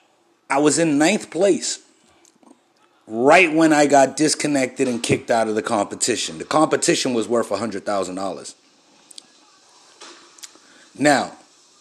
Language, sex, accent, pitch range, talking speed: English, male, American, 120-170 Hz, 110 wpm